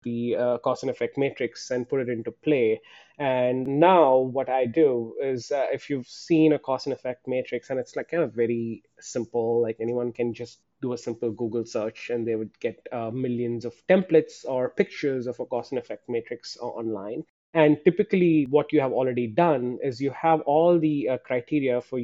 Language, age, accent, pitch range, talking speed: English, 30-49, Indian, 125-160 Hz, 200 wpm